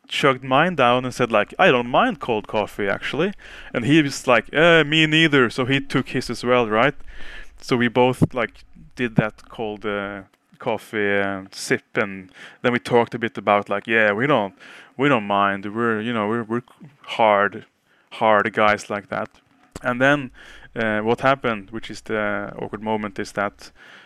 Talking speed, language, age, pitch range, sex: 180 wpm, English, 20-39, 115-145 Hz, male